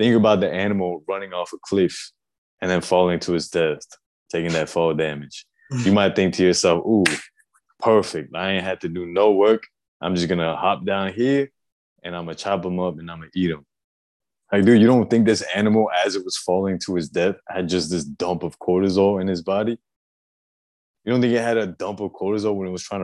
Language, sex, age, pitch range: English, male, 20-39, 85-110 Hz